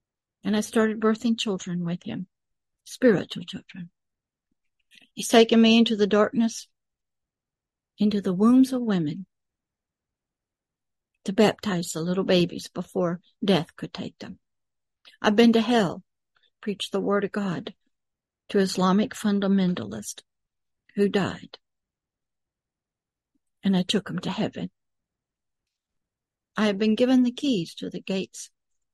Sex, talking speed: female, 120 wpm